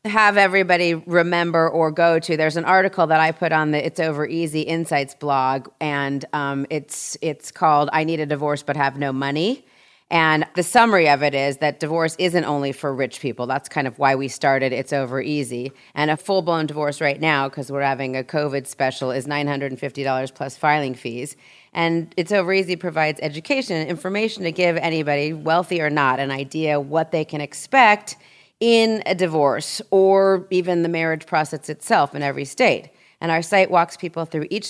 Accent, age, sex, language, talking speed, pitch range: American, 30-49, female, English, 190 wpm, 140-175 Hz